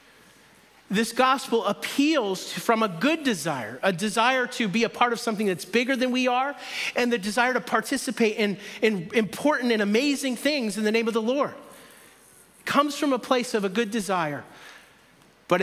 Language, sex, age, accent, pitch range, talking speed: English, male, 40-59, American, 185-235 Hz, 180 wpm